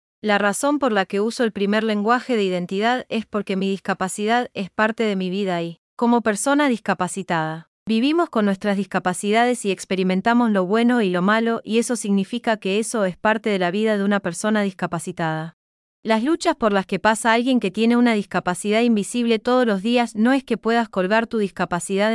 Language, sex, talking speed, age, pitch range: English, female, 190 wpm, 20-39, 190-235 Hz